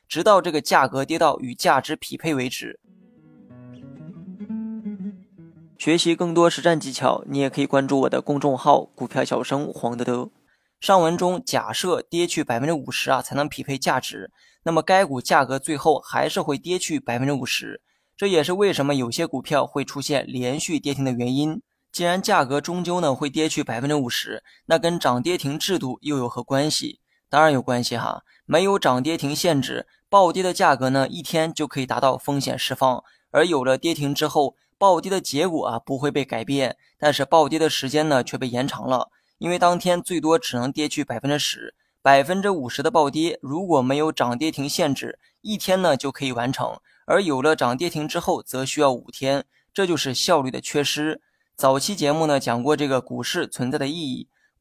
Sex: male